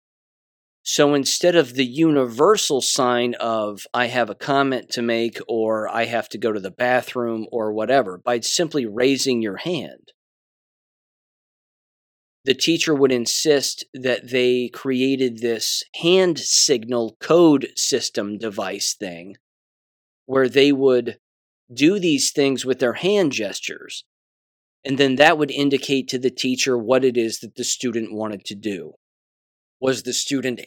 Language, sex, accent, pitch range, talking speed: English, male, American, 120-145 Hz, 140 wpm